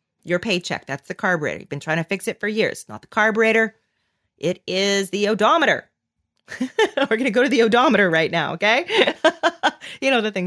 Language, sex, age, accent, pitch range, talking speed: English, female, 40-59, American, 185-260 Hz, 195 wpm